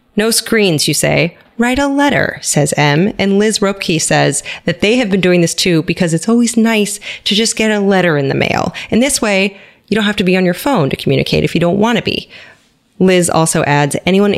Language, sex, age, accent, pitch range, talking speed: English, female, 30-49, American, 155-210 Hz, 230 wpm